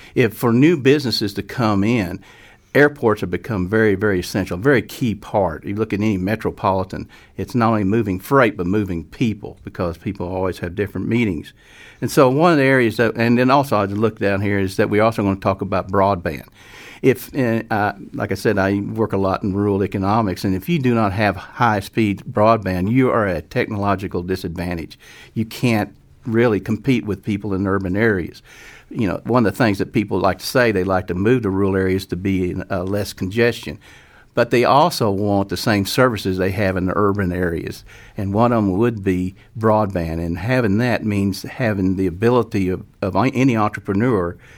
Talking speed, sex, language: 200 wpm, male, English